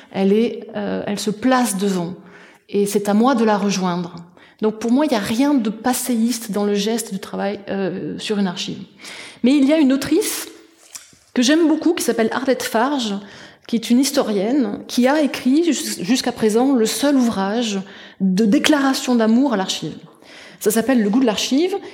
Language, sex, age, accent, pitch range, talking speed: French, female, 30-49, French, 195-250 Hz, 185 wpm